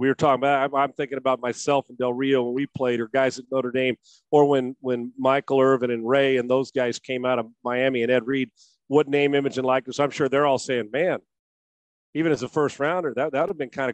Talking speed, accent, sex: 240 wpm, American, male